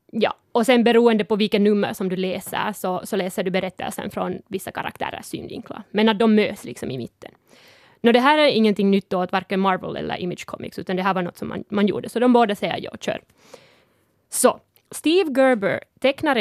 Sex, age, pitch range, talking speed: female, 20-39, 190-230 Hz, 210 wpm